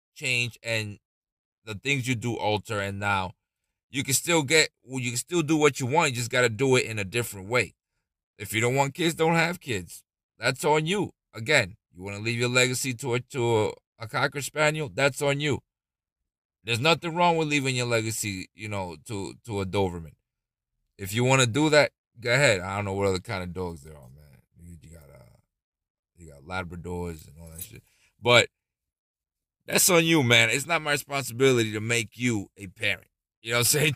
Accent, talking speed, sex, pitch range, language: American, 205 wpm, male, 100-145 Hz, English